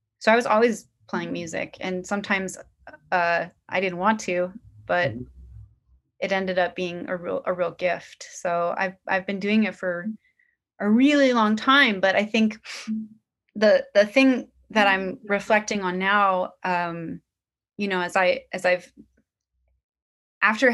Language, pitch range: English, 160-200 Hz